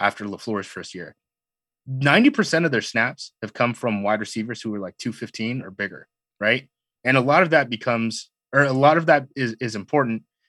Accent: American